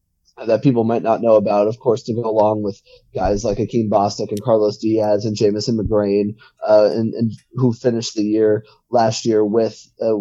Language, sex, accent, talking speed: English, male, American, 195 wpm